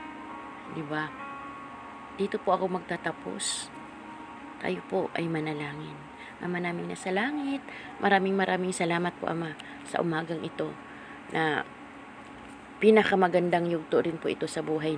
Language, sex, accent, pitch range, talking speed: Filipino, female, native, 160-195 Hz, 120 wpm